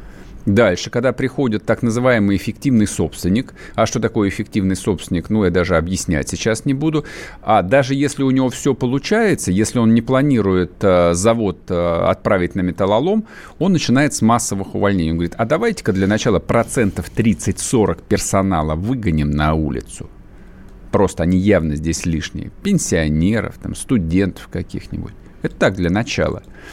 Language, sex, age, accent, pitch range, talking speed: Russian, male, 50-69, native, 90-120 Hz, 145 wpm